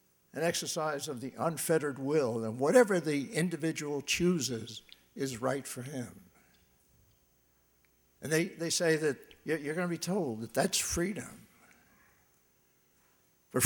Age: 60-79